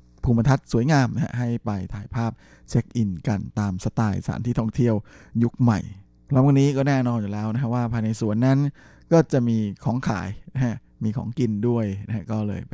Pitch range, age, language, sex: 100-125 Hz, 20-39, Thai, male